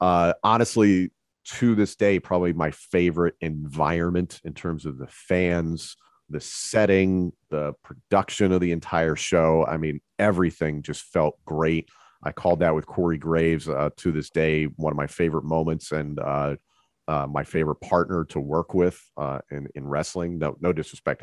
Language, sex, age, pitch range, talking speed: English, male, 40-59, 80-100 Hz, 165 wpm